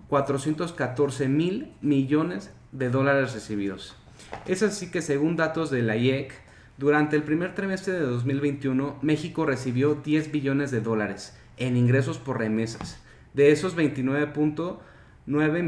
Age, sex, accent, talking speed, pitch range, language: 30-49, male, Mexican, 125 wpm, 125-150 Hz, Spanish